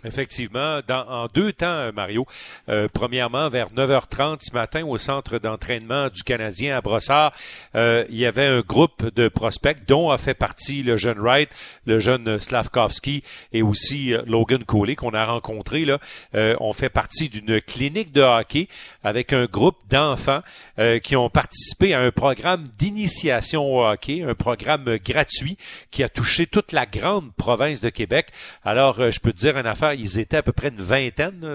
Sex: male